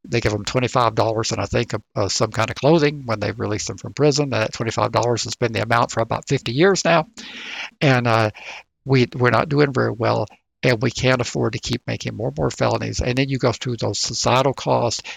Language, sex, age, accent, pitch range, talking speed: English, male, 60-79, American, 115-145 Hz, 230 wpm